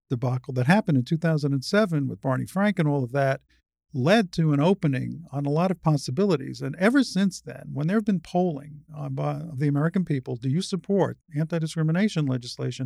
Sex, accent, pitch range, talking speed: male, American, 130-185 Hz, 180 wpm